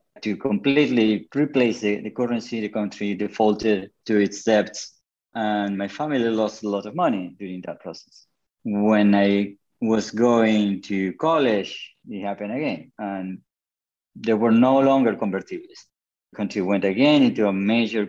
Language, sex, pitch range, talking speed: English, male, 95-115 Hz, 150 wpm